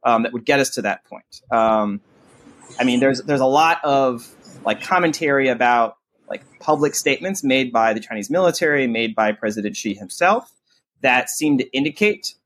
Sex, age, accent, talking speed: male, 30-49, American, 175 wpm